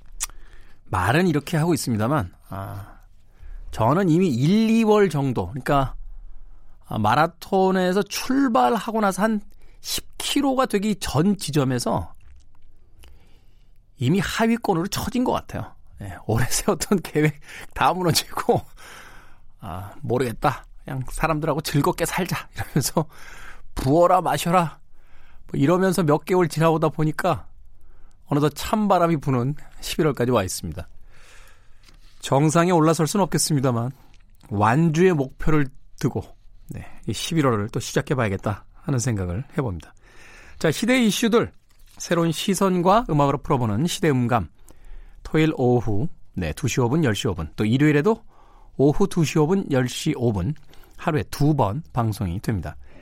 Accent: native